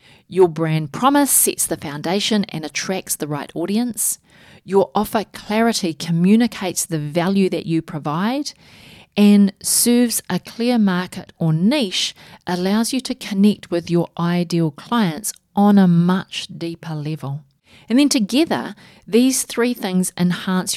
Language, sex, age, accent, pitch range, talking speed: English, female, 40-59, Australian, 170-215 Hz, 135 wpm